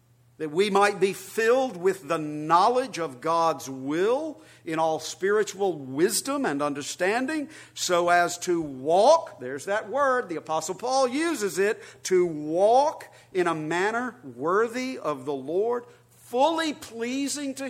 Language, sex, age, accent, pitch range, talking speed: English, male, 50-69, American, 175-250 Hz, 140 wpm